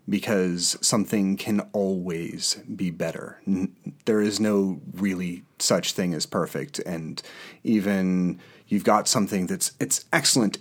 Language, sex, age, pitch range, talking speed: English, male, 30-49, 105-160 Hz, 125 wpm